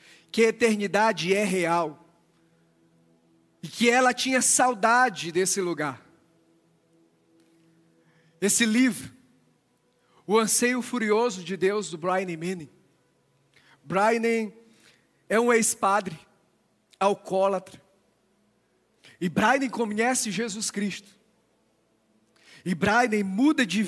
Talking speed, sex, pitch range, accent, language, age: 90 wpm, male, 170-225 Hz, Brazilian, Portuguese, 40-59